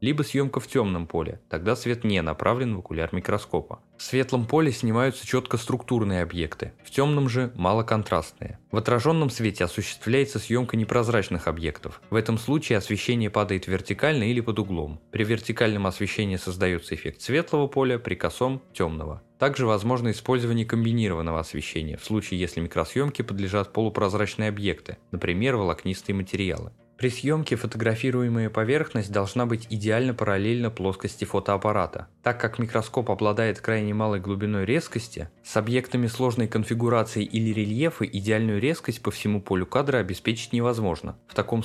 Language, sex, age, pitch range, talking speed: Russian, male, 20-39, 100-120 Hz, 145 wpm